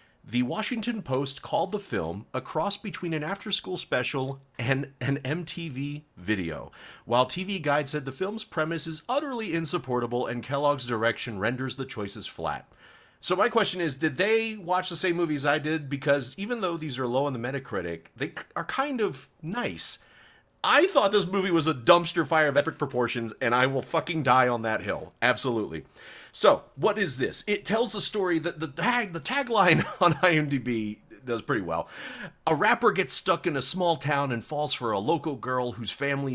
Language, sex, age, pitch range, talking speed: English, male, 40-59, 130-185 Hz, 185 wpm